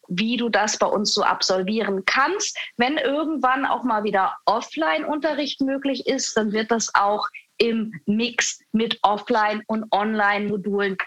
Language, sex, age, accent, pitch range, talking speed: German, female, 30-49, German, 210-270 Hz, 140 wpm